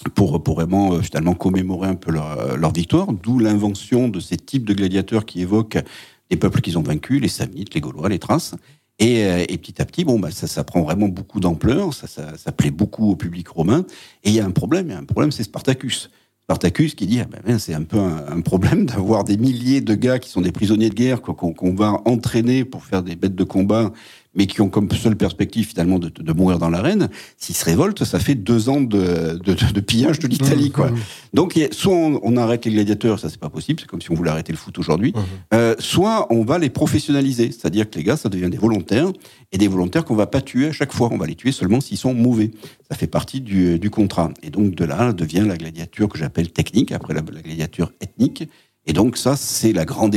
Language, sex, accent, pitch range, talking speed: French, male, French, 90-120 Hz, 235 wpm